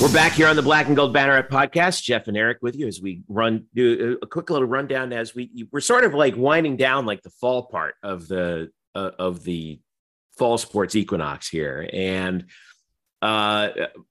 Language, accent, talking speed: English, American, 195 wpm